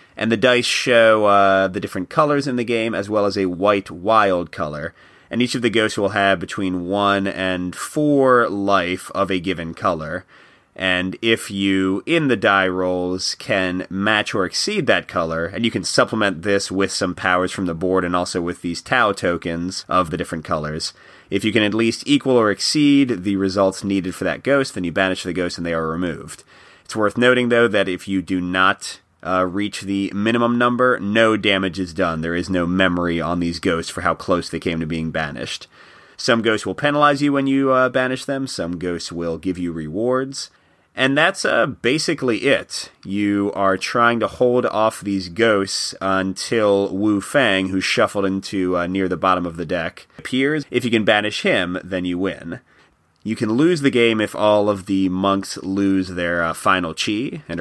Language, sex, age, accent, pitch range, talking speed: English, male, 30-49, American, 90-115 Hz, 200 wpm